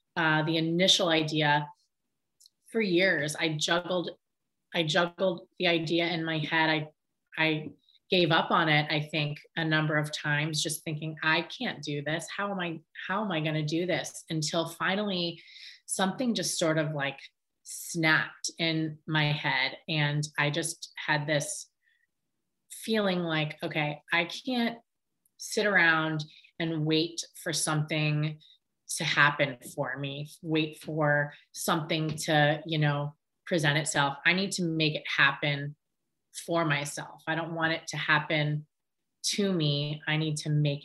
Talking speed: 150 wpm